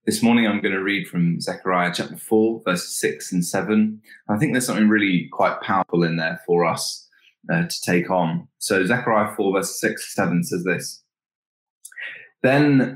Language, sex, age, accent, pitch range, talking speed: English, male, 20-39, British, 90-115 Hz, 180 wpm